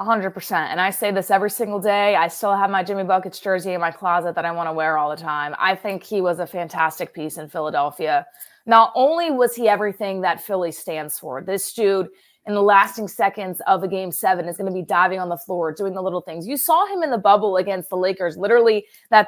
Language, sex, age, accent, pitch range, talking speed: English, female, 20-39, American, 175-225 Hz, 240 wpm